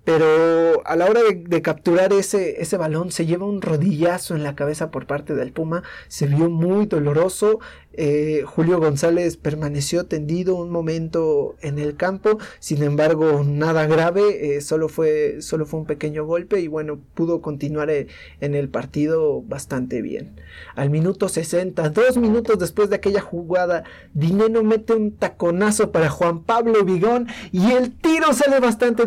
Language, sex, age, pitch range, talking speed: Spanish, male, 30-49, 155-200 Hz, 160 wpm